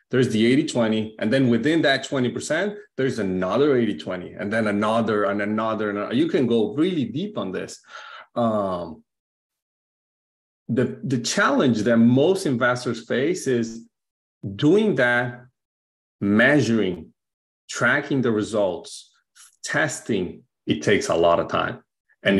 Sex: male